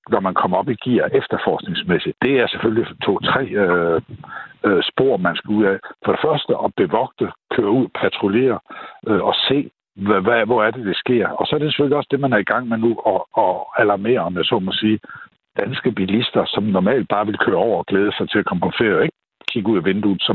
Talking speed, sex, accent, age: 225 wpm, male, native, 60-79